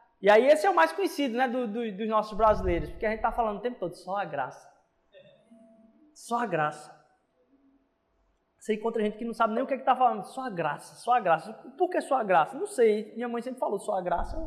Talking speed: 255 wpm